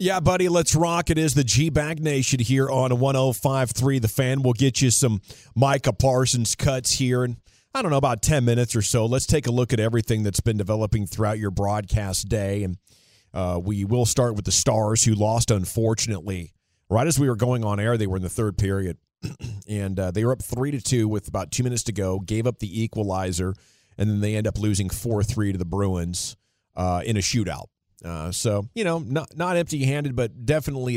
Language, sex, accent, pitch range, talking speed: English, male, American, 100-125 Hz, 210 wpm